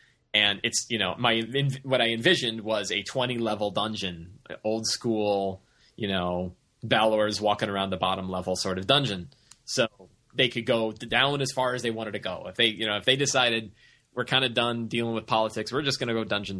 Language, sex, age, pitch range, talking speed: English, male, 20-39, 95-120 Hz, 210 wpm